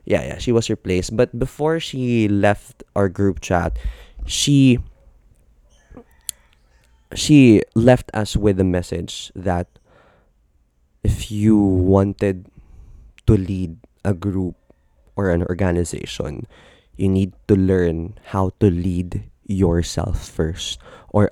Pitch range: 85-115 Hz